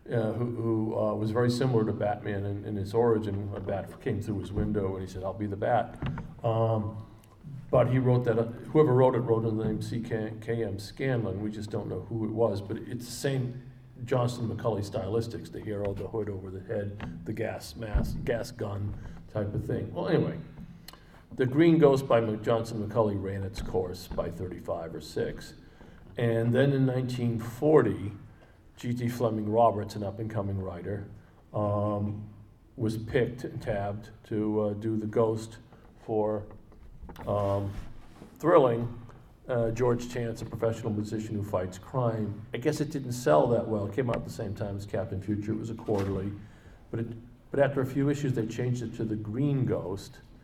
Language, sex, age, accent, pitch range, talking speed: English, male, 50-69, American, 105-120 Hz, 180 wpm